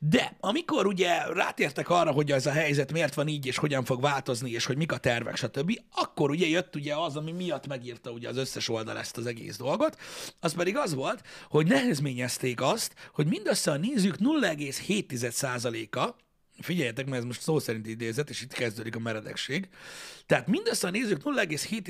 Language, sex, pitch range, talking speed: Hungarian, male, 135-190 Hz, 180 wpm